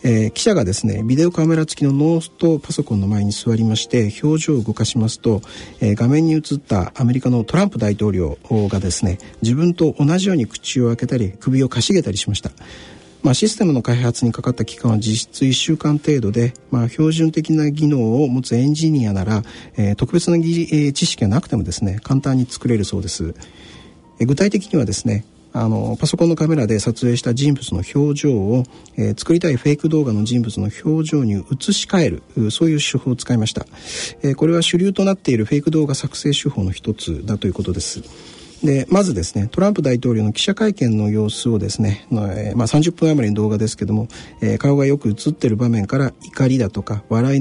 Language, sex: Japanese, male